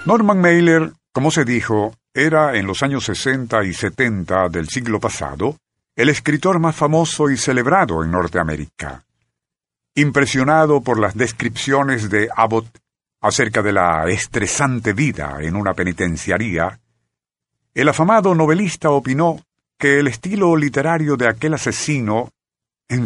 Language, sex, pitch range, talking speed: Spanish, male, 100-150 Hz, 130 wpm